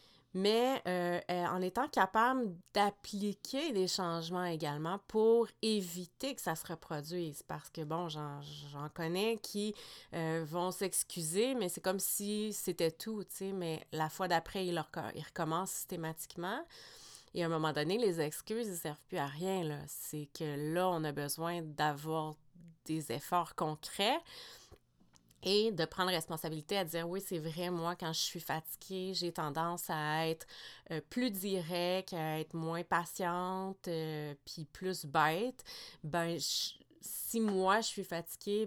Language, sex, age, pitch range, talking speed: French, female, 30-49, 160-195 Hz, 160 wpm